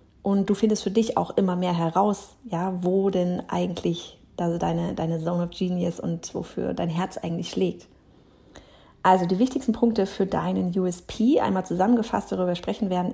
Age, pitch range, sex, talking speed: 30-49, 175-215 Hz, female, 170 wpm